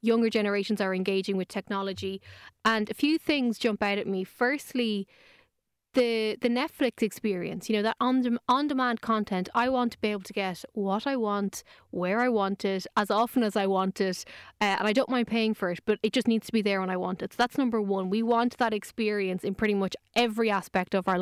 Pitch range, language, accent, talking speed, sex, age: 195-235 Hz, English, Irish, 225 wpm, female, 20-39